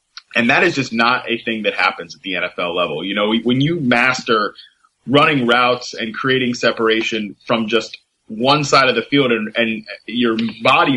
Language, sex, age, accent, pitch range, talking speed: English, male, 20-39, American, 115-135 Hz, 185 wpm